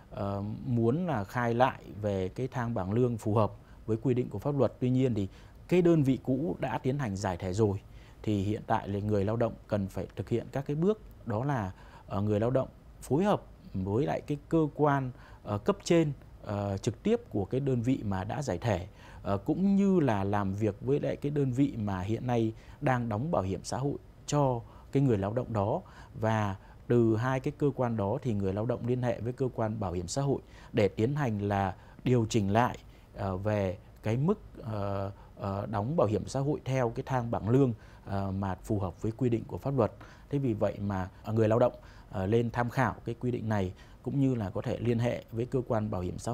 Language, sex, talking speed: Vietnamese, male, 220 wpm